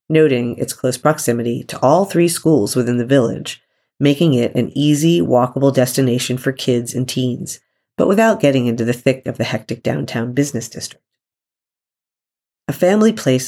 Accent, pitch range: American, 125-155 Hz